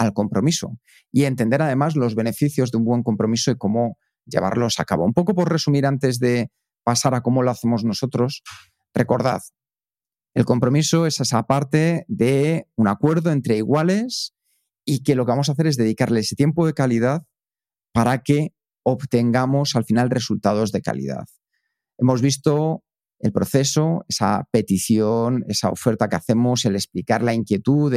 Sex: male